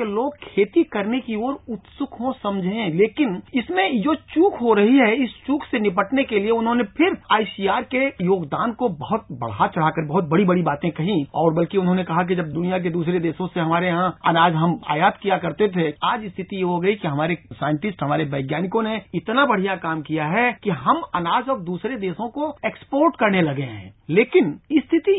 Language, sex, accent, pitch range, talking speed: Hindi, male, native, 180-245 Hz, 195 wpm